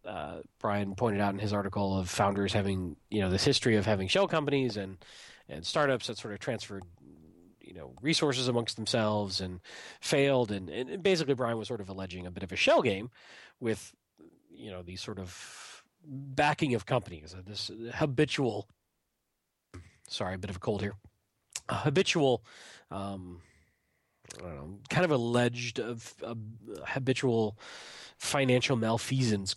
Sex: male